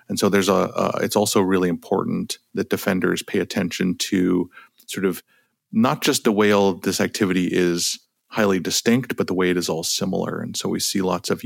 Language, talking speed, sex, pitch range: English, 205 wpm, male, 95-115 Hz